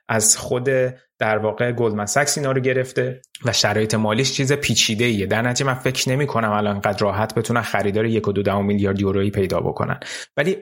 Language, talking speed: Persian, 180 wpm